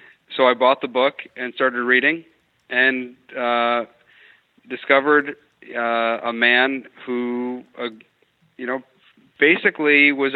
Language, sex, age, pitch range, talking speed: English, male, 40-59, 110-130 Hz, 115 wpm